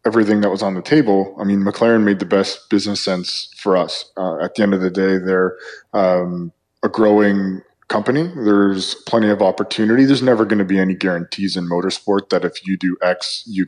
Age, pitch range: 20-39, 90-105 Hz